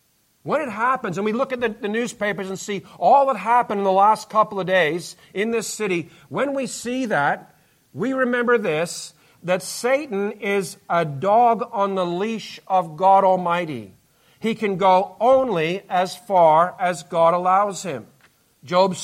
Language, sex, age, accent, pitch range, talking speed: English, male, 50-69, American, 170-210 Hz, 165 wpm